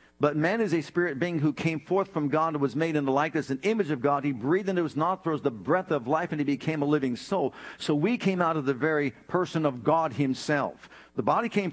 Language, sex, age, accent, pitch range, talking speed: English, male, 50-69, American, 145-180 Hz, 255 wpm